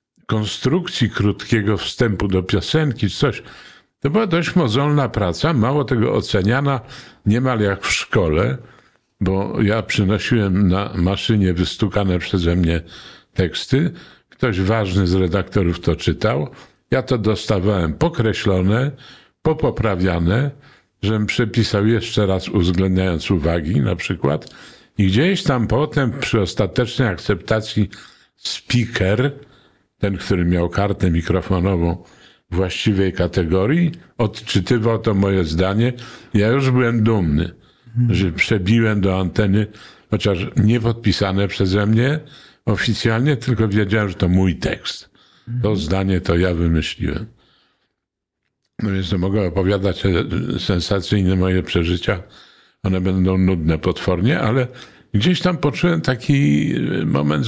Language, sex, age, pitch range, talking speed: Polish, male, 50-69, 95-120 Hz, 110 wpm